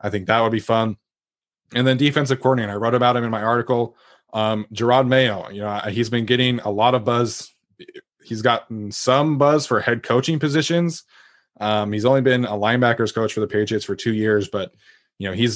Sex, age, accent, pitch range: male, 20-39, American, 105-120 Hz